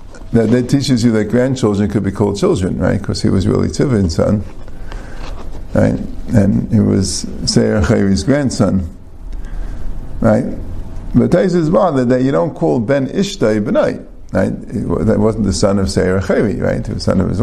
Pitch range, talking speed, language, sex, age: 100-135 Hz, 180 wpm, English, male, 50-69